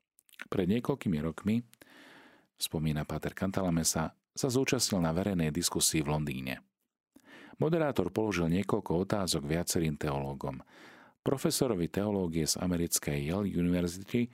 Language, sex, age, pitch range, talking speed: Slovak, male, 40-59, 75-110 Hz, 105 wpm